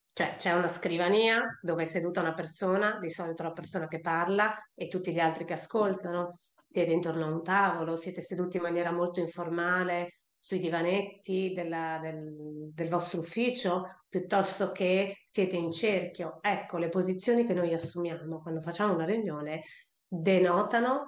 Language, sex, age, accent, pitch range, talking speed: Italian, female, 30-49, native, 165-195 Hz, 155 wpm